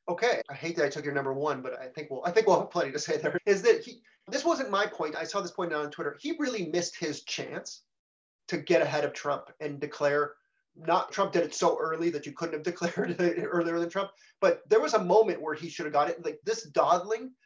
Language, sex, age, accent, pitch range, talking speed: English, male, 30-49, American, 145-215 Hz, 260 wpm